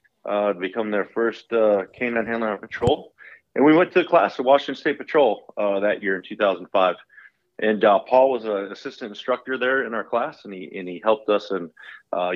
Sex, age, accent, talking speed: male, 30-49, American, 215 wpm